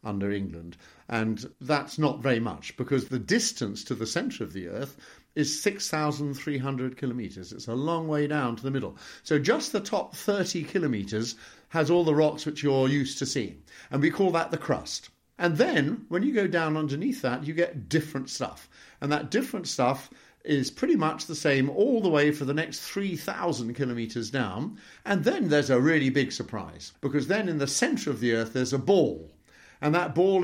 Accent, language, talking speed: British, English, 195 wpm